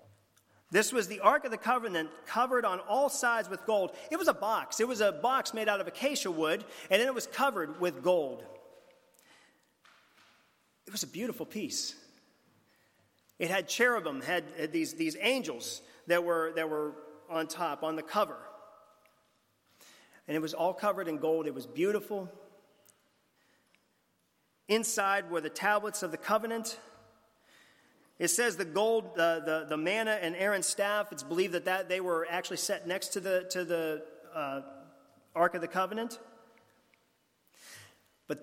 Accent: American